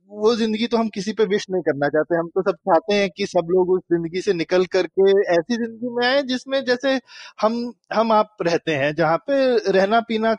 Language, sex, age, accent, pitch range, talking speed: Hindi, male, 20-39, native, 185-255 Hz, 220 wpm